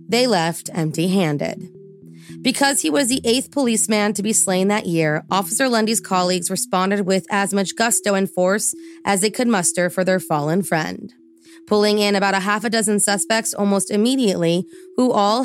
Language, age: English, 20-39